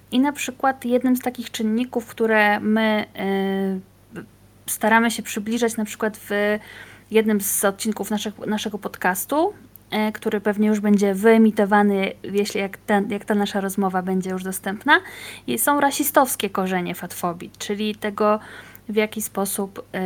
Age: 20-39